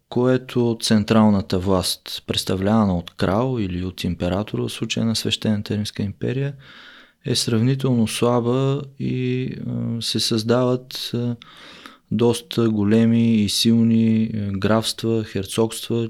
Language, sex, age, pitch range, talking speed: Bulgarian, male, 20-39, 100-120 Hz, 100 wpm